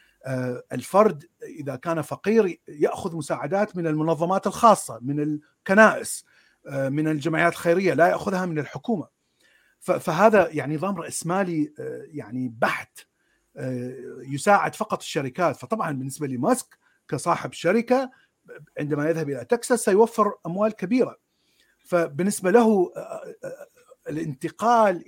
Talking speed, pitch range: 100 wpm, 145-210 Hz